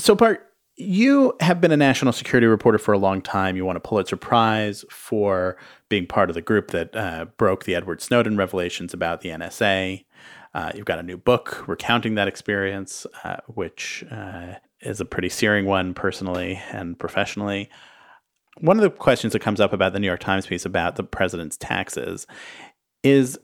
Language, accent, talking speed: English, American, 185 wpm